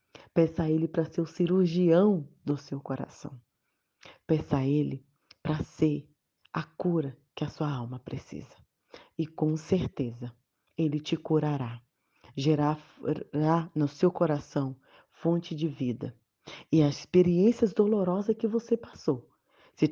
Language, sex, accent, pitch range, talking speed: Portuguese, female, Brazilian, 135-170 Hz, 130 wpm